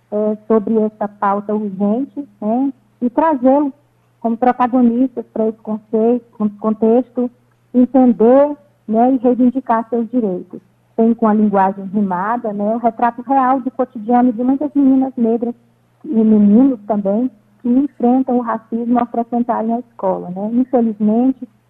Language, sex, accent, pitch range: Portuguese, female, Brazilian, 220-260 Hz